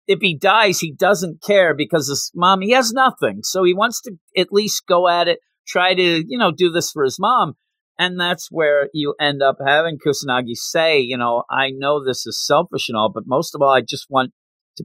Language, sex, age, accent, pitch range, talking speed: English, male, 40-59, American, 120-180 Hz, 225 wpm